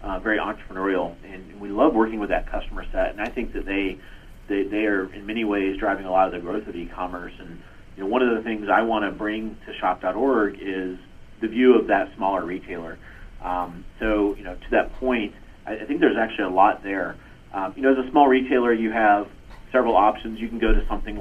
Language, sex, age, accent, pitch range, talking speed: English, male, 40-59, American, 90-115 Hz, 230 wpm